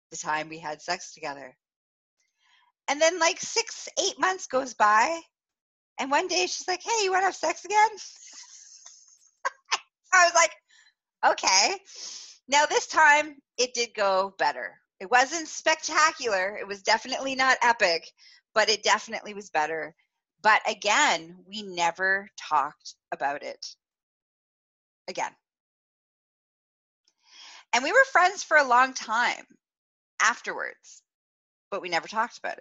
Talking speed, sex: 135 wpm, female